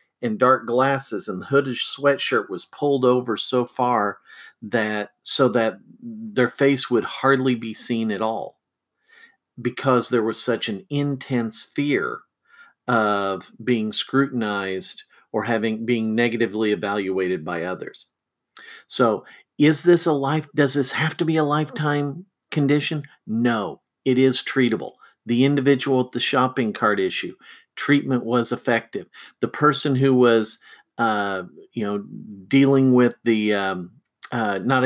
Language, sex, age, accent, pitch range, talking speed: English, male, 50-69, American, 115-140 Hz, 140 wpm